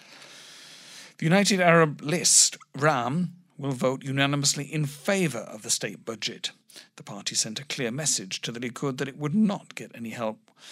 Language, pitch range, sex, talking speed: English, 120-155 Hz, male, 170 wpm